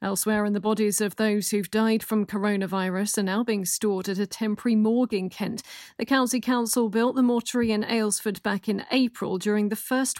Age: 40-59